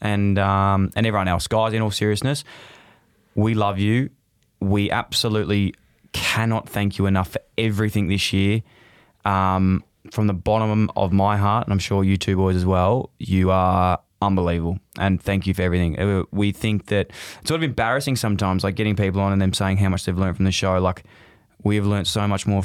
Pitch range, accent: 95-105 Hz, Australian